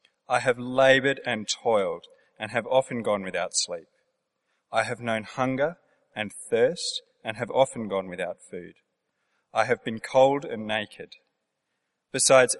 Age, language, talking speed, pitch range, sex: 30-49, English, 145 wpm, 105-135 Hz, male